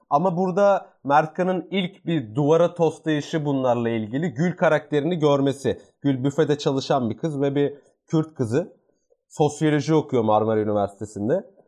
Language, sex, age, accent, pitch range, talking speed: Turkish, male, 30-49, native, 135-165 Hz, 130 wpm